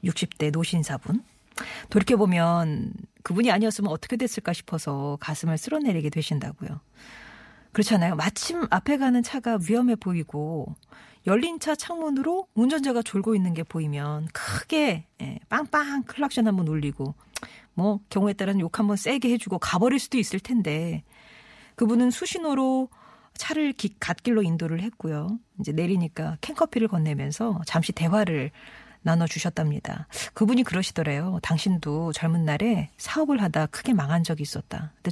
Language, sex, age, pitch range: Korean, female, 40-59, 160-230 Hz